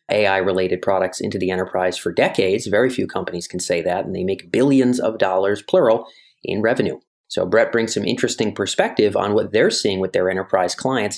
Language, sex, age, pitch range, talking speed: English, male, 30-49, 95-135 Hz, 195 wpm